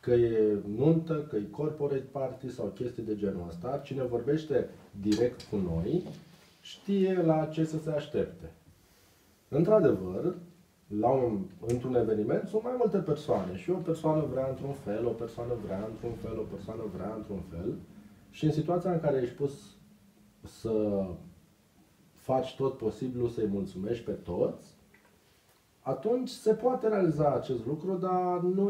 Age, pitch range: 30-49, 105-155 Hz